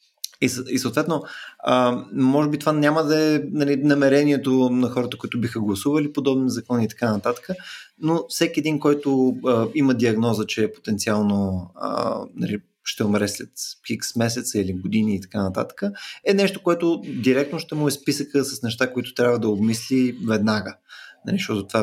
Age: 20-39